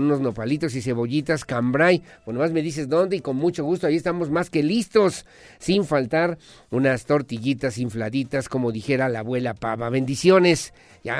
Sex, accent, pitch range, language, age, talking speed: male, Mexican, 125-160 Hz, Spanish, 50-69, 165 wpm